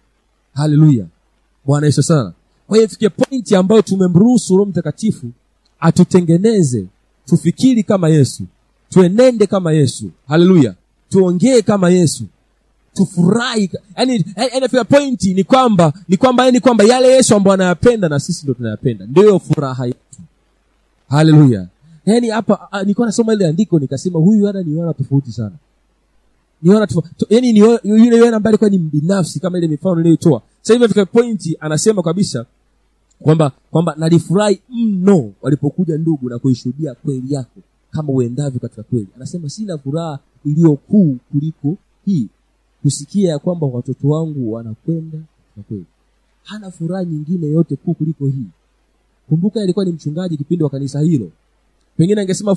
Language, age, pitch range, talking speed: Swahili, 40-59, 145-200 Hz, 150 wpm